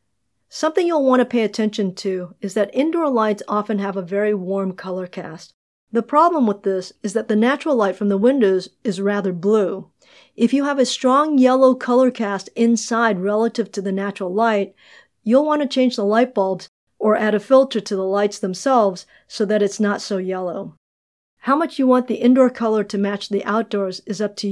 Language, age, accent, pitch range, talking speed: English, 50-69, American, 195-245 Hz, 200 wpm